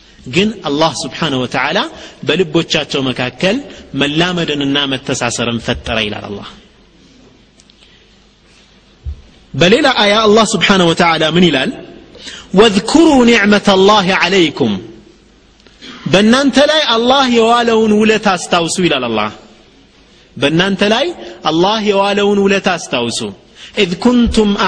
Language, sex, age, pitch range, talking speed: Amharic, male, 30-49, 165-235 Hz, 90 wpm